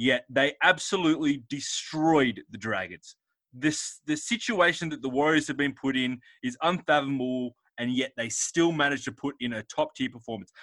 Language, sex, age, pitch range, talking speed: English, male, 20-39, 115-160 Hz, 160 wpm